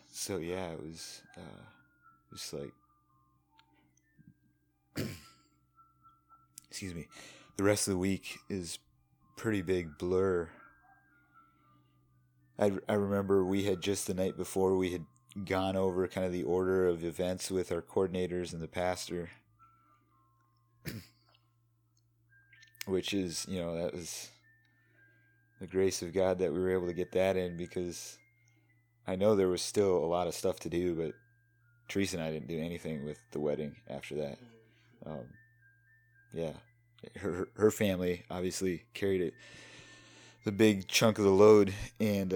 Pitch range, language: 90-115 Hz, English